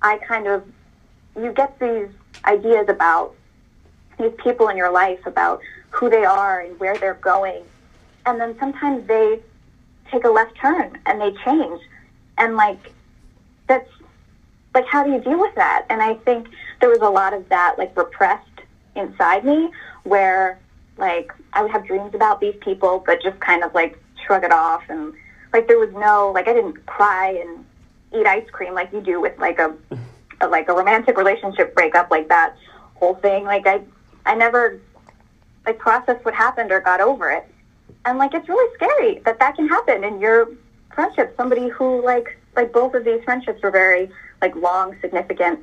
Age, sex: 20-39, female